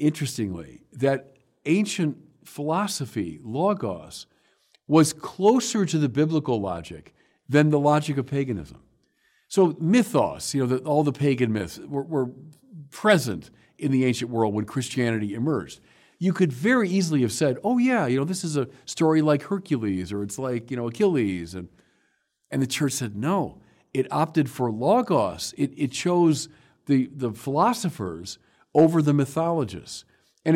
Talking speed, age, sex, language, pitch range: 150 wpm, 50-69, male, English, 115-160 Hz